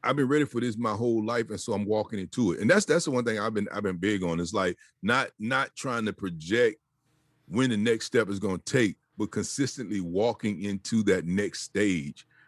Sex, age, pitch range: male, 40-59, 95-135 Hz